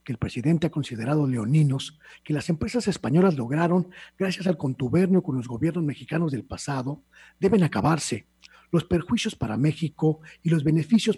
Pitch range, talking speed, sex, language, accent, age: 130-170 Hz, 155 wpm, male, Spanish, Mexican, 50-69